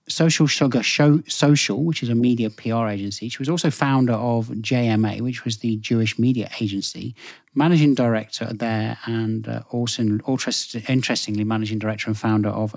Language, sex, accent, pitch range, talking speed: English, male, British, 110-145 Hz, 155 wpm